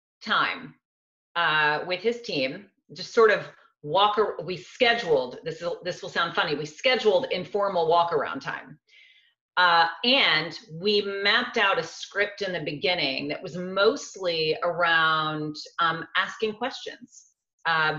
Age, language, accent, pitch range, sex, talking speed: 40-59, English, American, 155-230 Hz, female, 135 wpm